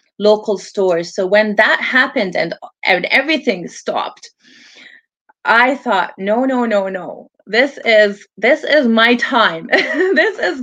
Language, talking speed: English, 135 wpm